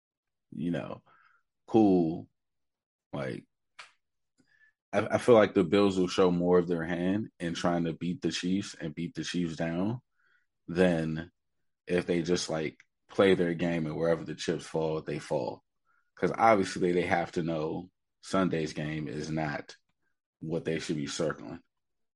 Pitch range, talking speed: 80-95 Hz, 155 wpm